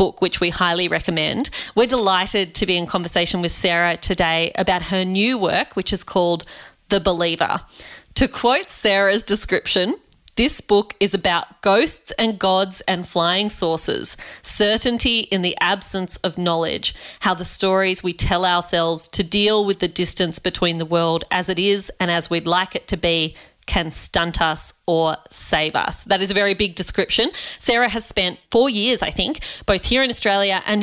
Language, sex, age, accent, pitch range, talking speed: English, female, 30-49, Australian, 180-215 Hz, 175 wpm